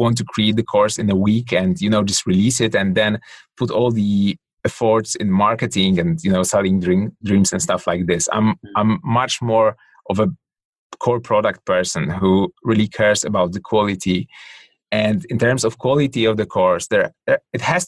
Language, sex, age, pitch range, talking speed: English, male, 30-49, 95-115 Hz, 195 wpm